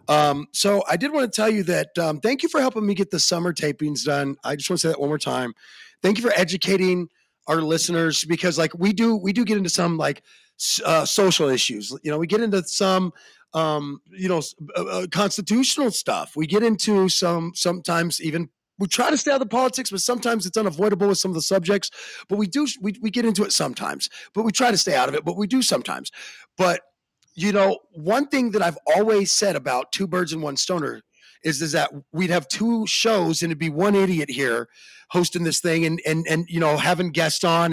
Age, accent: 30-49, American